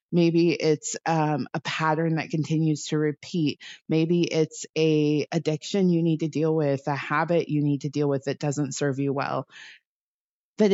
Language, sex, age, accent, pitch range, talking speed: English, female, 30-49, American, 150-175 Hz, 175 wpm